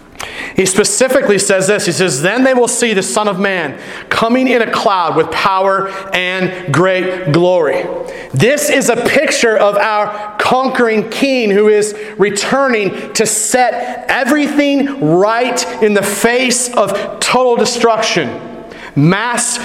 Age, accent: 40-59, American